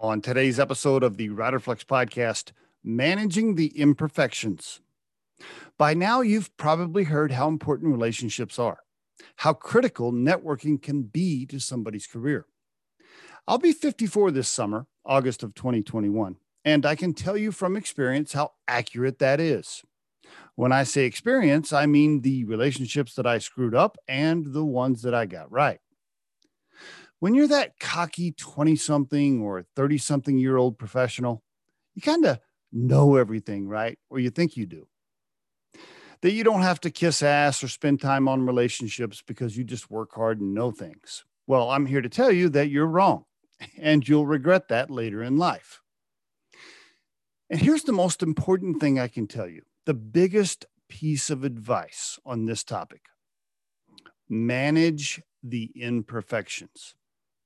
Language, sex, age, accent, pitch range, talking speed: English, male, 40-59, American, 120-155 Hz, 150 wpm